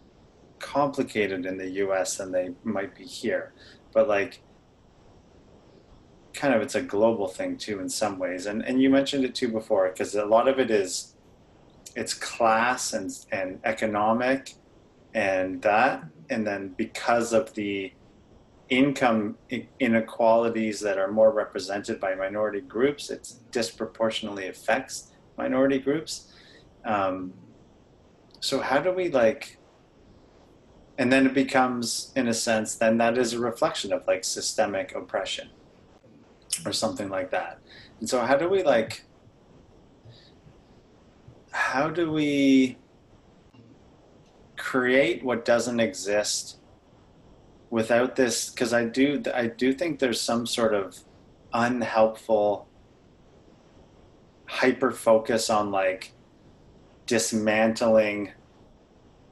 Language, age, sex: English, 30-49, male